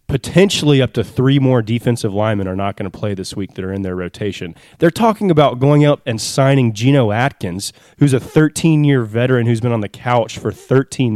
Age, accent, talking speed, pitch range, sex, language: 20-39, American, 210 wpm, 110-140 Hz, male, English